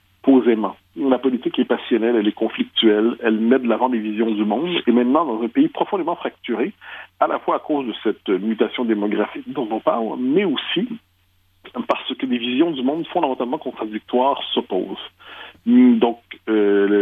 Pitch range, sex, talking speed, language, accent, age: 110-145 Hz, male, 170 wpm, French, French, 50-69